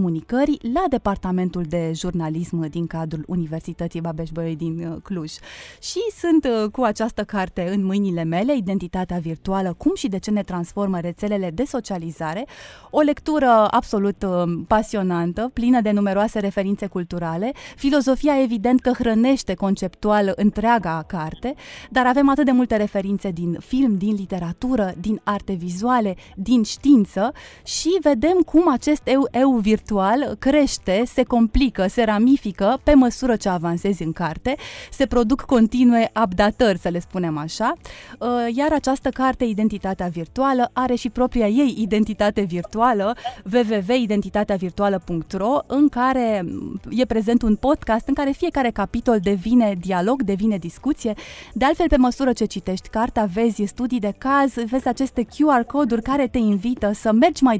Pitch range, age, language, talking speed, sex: 190-255 Hz, 20-39, Romanian, 140 wpm, female